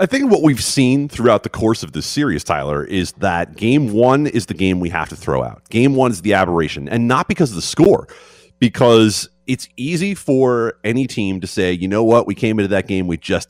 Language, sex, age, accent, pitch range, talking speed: English, male, 30-49, American, 100-135 Hz, 235 wpm